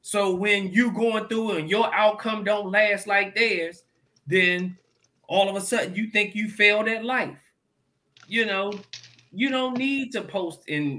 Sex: male